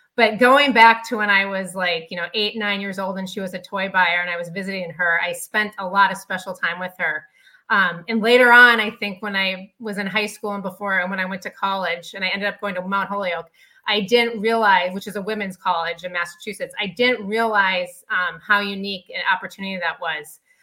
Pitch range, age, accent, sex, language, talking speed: 180-210 Hz, 30-49, American, female, English, 240 wpm